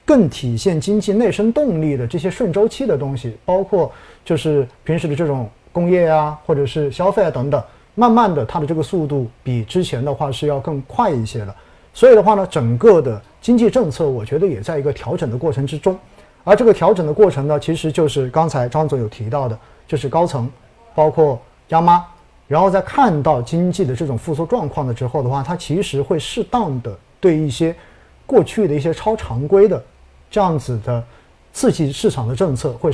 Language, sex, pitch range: Chinese, male, 130-180 Hz